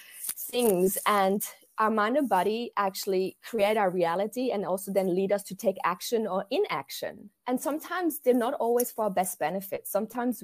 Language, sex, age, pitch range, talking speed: English, female, 20-39, 180-215 Hz, 170 wpm